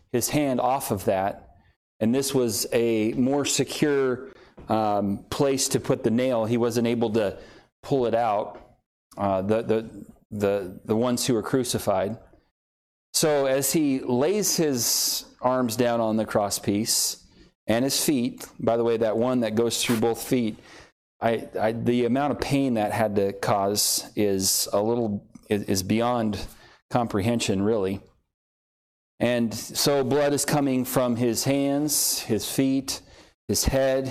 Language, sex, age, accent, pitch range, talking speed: English, male, 30-49, American, 105-130 Hz, 155 wpm